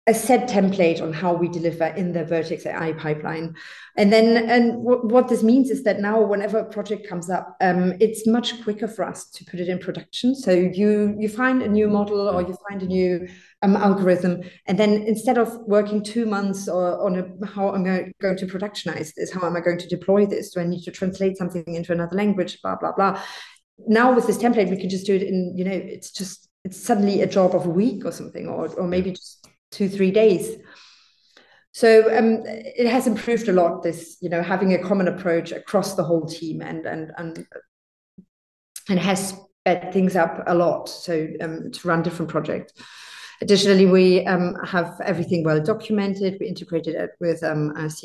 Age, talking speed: 30-49, 205 wpm